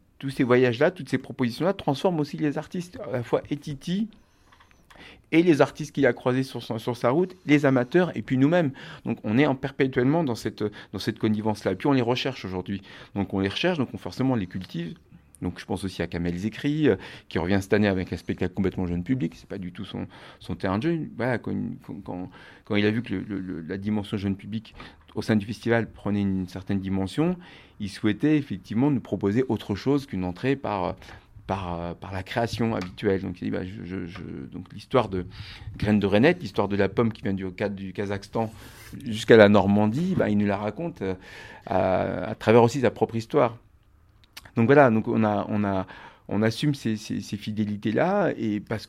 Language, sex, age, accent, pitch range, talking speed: French, male, 40-59, French, 95-125 Hz, 215 wpm